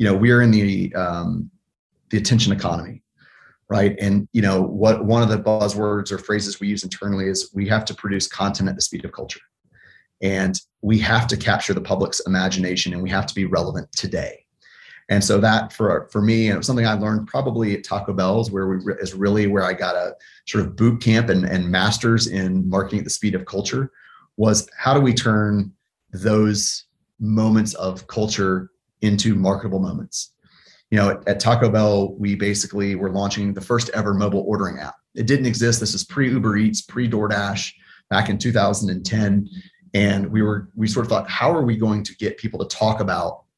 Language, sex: English, male